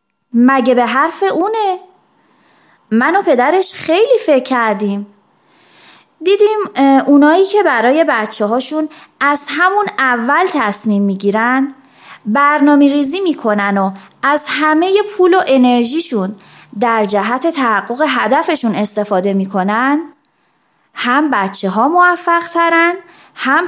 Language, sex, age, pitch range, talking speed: Persian, female, 20-39, 225-315 Hz, 105 wpm